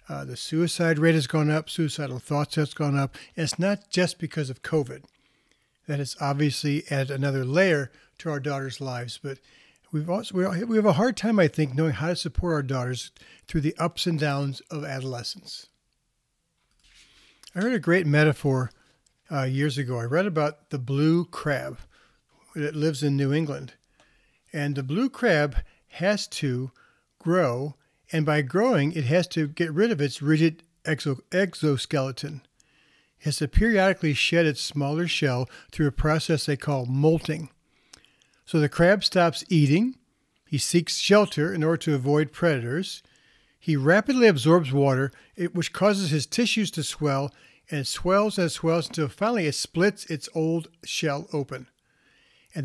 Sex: male